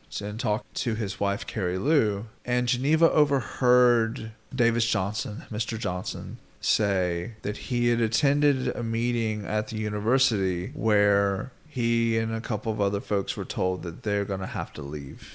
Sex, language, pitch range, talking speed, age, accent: male, English, 100-125 Hz, 160 wpm, 30-49, American